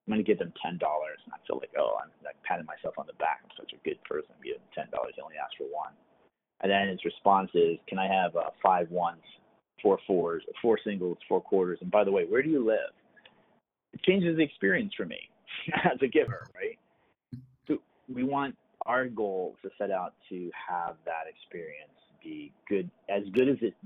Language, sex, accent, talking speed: English, male, American, 210 wpm